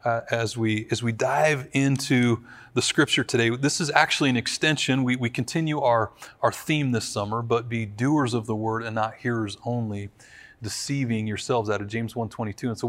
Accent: American